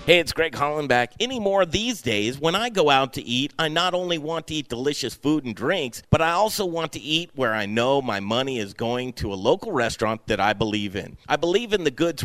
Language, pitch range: English, 120-170 Hz